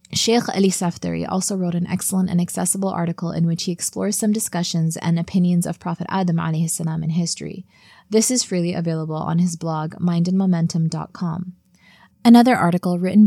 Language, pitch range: English, 170-195 Hz